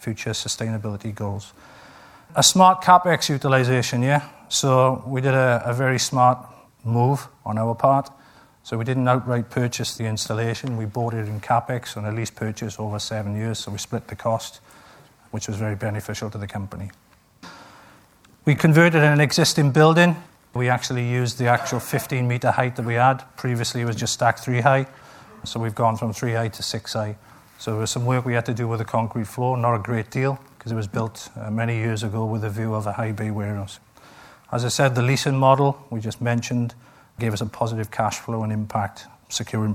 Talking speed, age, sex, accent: 200 wpm, 40-59, male, British